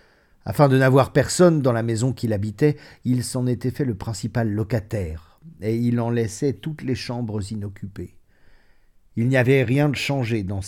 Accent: French